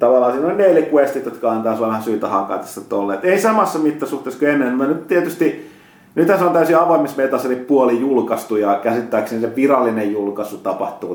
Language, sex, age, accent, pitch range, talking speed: Finnish, male, 30-49, native, 115-160 Hz, 190 wpm